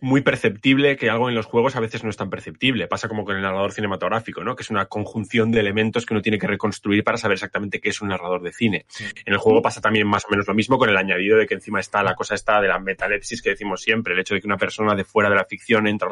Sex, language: male, Spanish